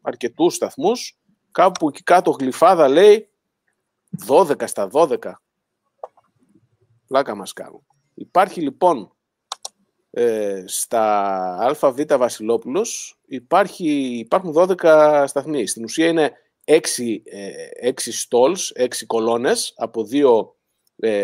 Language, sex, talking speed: Greek, male, 100 wpm